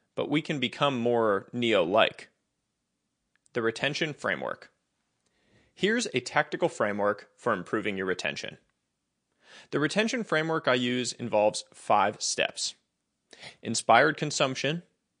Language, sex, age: English, male, 30-49